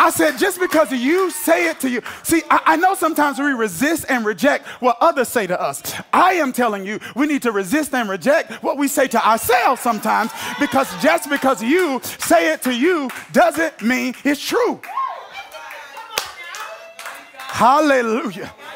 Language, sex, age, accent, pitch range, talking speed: English, male, 30-49, American, 250-320 Hz, 165 wpm